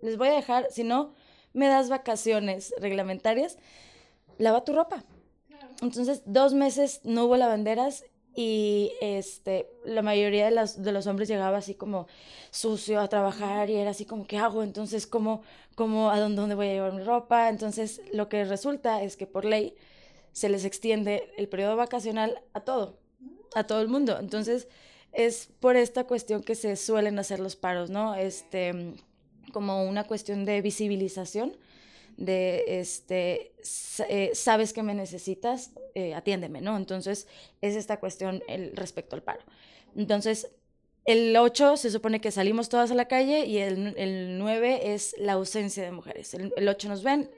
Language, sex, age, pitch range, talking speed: Spanish, female, 20-39, 195-235 Hz, 165 wpm